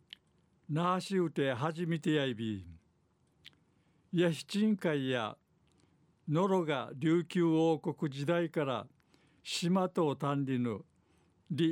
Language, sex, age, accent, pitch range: Japanese, male, 60-79, native, 140-170 Hz